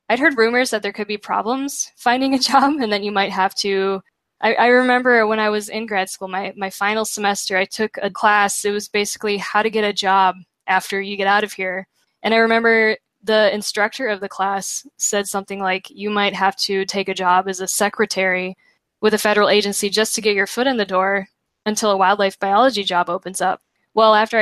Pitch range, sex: 195-225 Hz, female